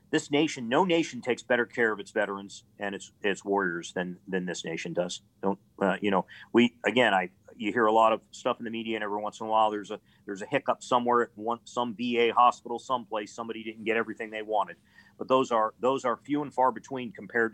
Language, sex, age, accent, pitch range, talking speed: English, male, 40-59, American, 105-130 Hz, 230 wpm